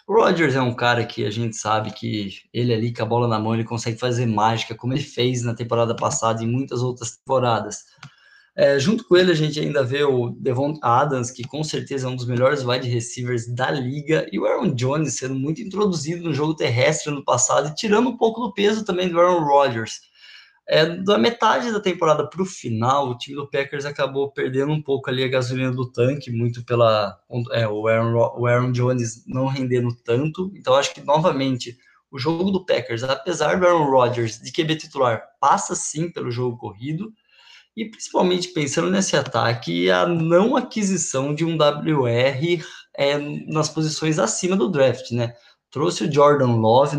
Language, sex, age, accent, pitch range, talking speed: Portuguese, male, 20-39, Brazilian, 120-160 Hz, 190 wpm